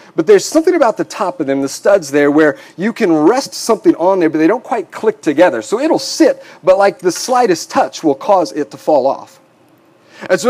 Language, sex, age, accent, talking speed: English, male, 40-59, American, 230 wpm